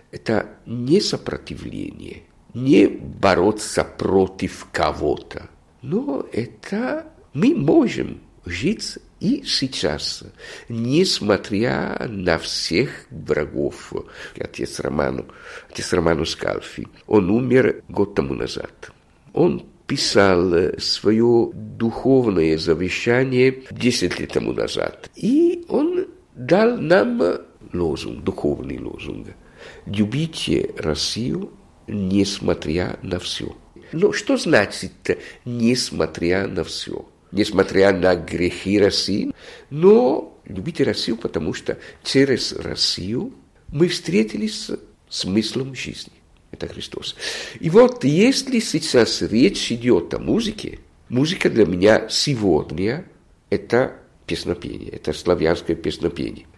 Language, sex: Russian, male